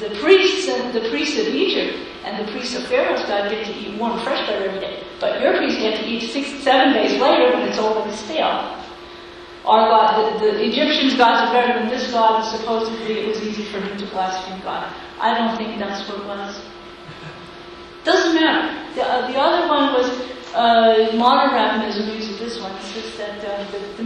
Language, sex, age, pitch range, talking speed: English, female, 40-59, 210-270 Hz, 210 wpm